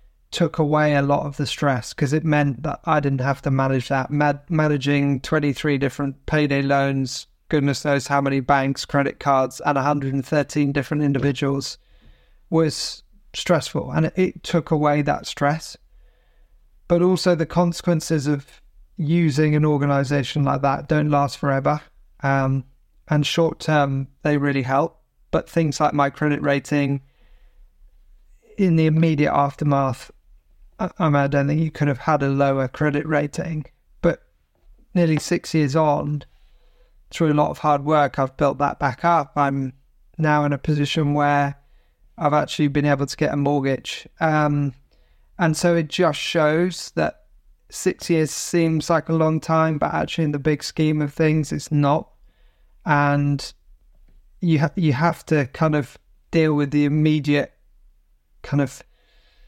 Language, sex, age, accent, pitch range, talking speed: English, male, 30-49, British, 140-155 Hz, 155 wpm